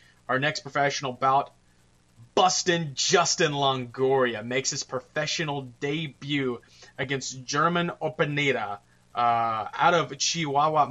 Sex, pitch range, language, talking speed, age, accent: male, 125-150 Hz, English, 100 wpm, 20-39, American